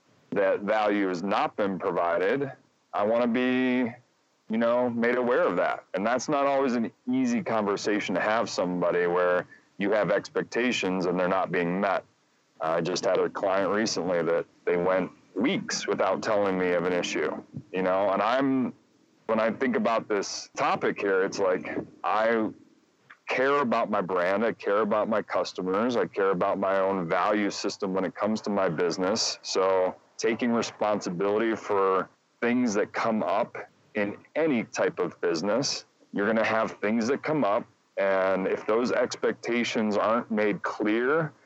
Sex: male